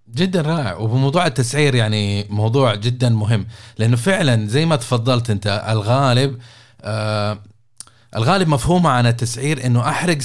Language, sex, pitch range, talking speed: Arabic, male, 115-155 Hz, 130 wpm